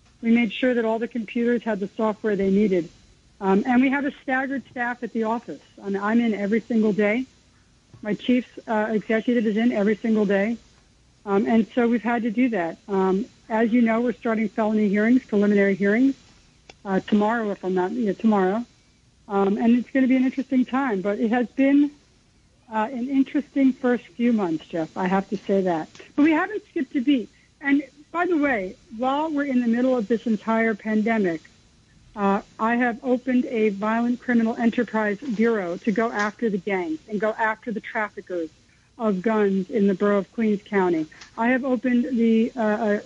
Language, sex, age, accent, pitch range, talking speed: English, female, 60-79, American, 205-240 Hz, 195 wpm